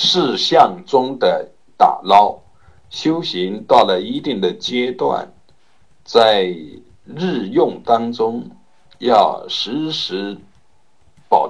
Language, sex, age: Chinese, male, 60-79